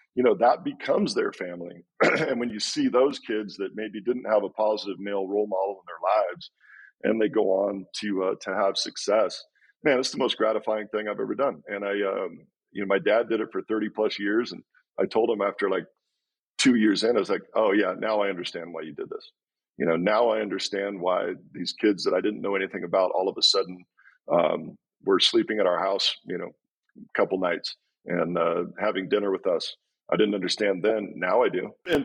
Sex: male